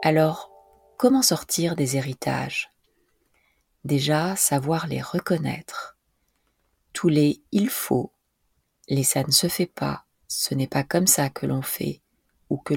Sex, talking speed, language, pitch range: female, 135 wpm, French, 140-185 Hz